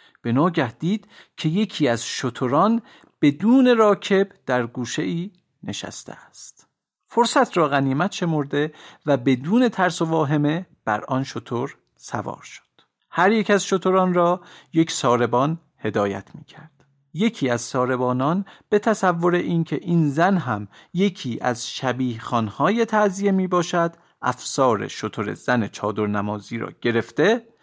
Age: 50-69